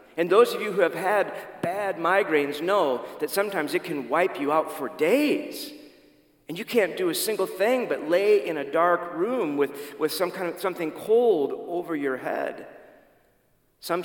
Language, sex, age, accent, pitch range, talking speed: English, male, 40-59, American, 135-215 Hz, 185 wpm